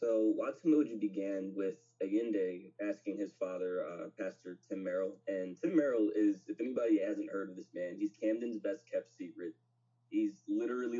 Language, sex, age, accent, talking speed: English, male, 20-39, American, 165 wpm